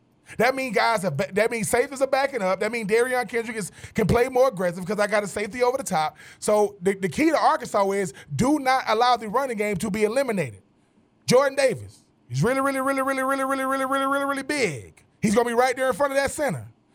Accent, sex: American, male